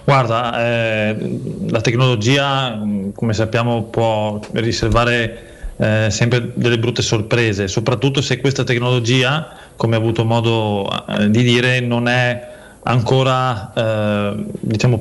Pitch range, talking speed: 110-125 Hz, 115 wpm